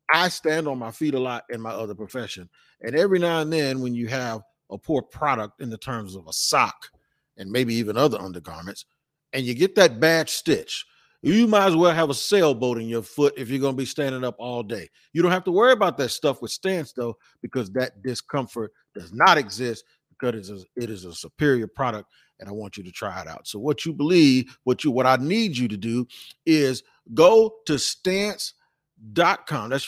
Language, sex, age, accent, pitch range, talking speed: English, male, 40-59, American, 120-160 Hz, 220 wpm